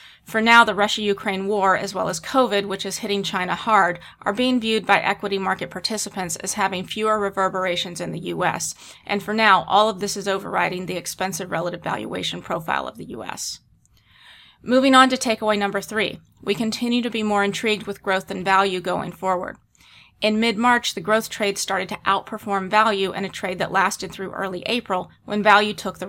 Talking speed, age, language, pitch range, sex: 190 wpm, 30-49, English, 190-215 Hz, female